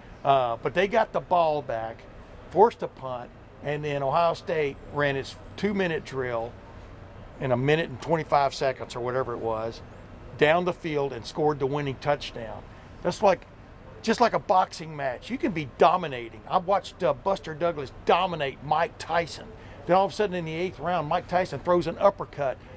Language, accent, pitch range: English, American, 120-180 Hz